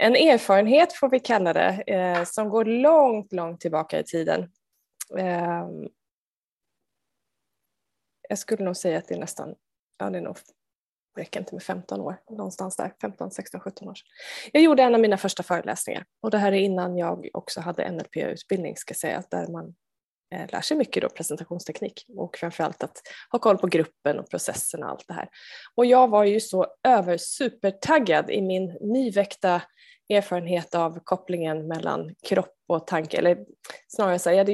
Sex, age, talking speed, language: female, 20-39, 175 wpm, Swedish